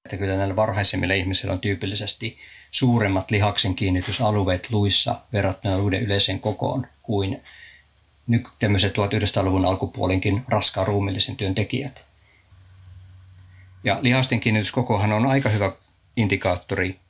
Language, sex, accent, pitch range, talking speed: Finnish, male, native, 95-120 Hz, 100 wpm